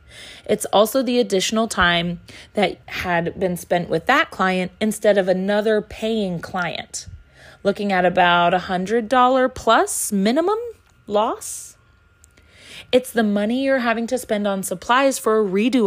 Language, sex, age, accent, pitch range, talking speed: English, female, 30-49, American, 180-225 Hz, 135 wpm